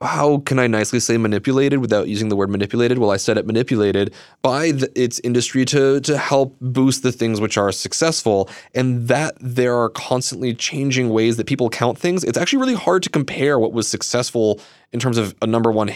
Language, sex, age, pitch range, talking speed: English, male, 20-39, 105-135 Hz, 205 wpm